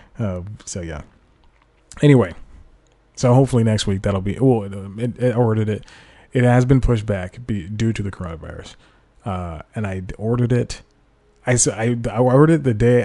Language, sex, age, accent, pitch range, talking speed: English, male, 30-49, American, 95-120 Hz, 175 wpm